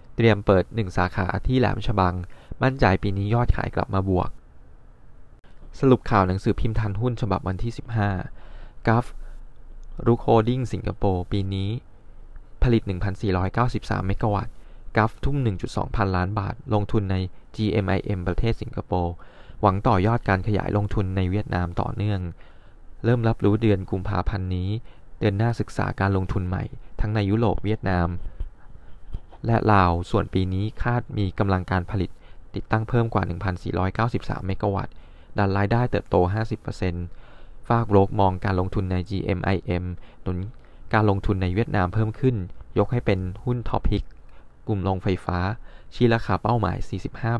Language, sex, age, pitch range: Thai, male, 20-39, 90-115 Hz